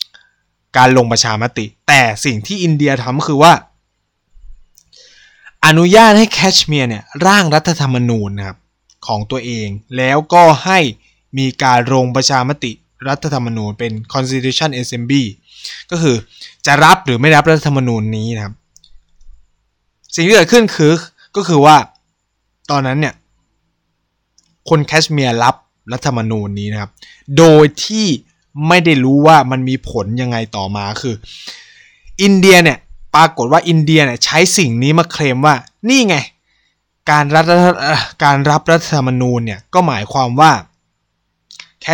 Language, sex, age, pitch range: Thai, male, 20-39, 115-160 Hz